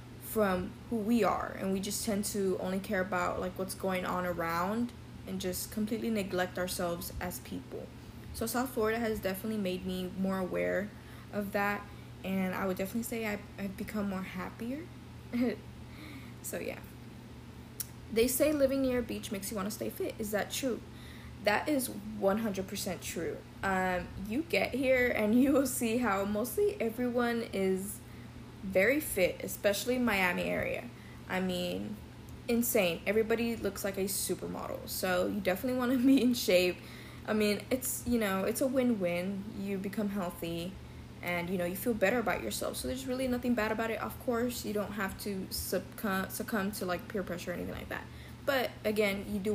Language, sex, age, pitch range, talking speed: English, female, 20-39, 180-225 Hz, 175 wpm